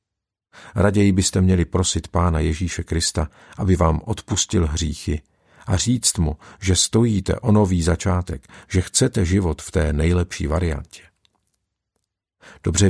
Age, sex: 50-69, male